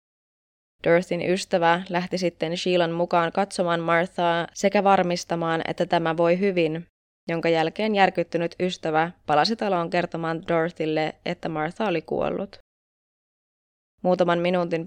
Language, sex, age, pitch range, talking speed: Finnish, female, 20-39, 160-185 Hz, 115 wpm